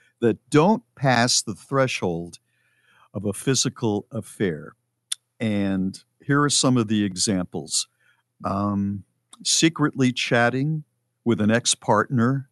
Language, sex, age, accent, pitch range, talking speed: English, male, 50-69, American, 100-125 Hz, 105 wpm